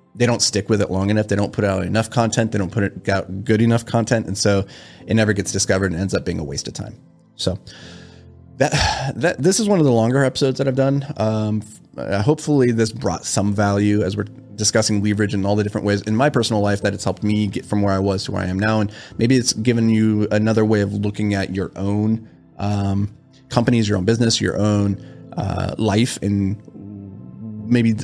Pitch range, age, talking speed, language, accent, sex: 95-110 Hz, 30-49, 225 wpm, English, American, male